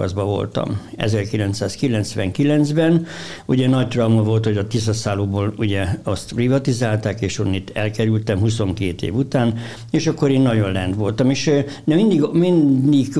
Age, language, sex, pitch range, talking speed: 60-79, Hungarian, male, 110-135 Hz, 125 wpm